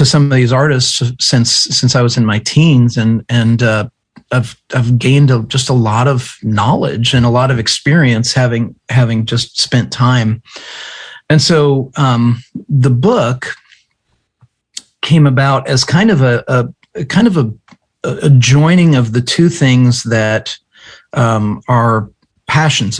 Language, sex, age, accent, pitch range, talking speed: English, male, 40-59, American, 120-140 Hz, 155 wpm